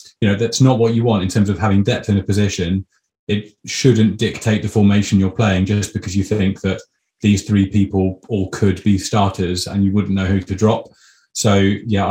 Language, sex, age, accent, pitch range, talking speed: English, male, 30-49, British, 95-110 Hz, 215 wpm